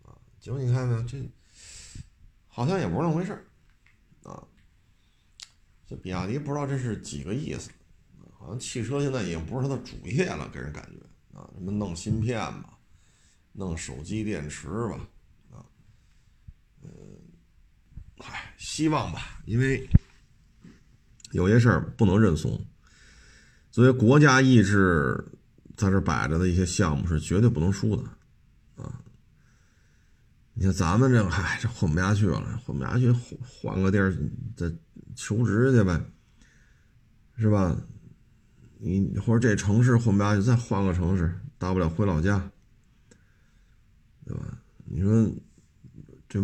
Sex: male